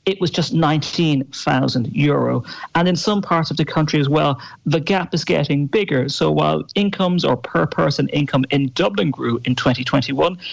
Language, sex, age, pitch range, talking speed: English, male, 40-59, 135-170 Hz, 170 wpm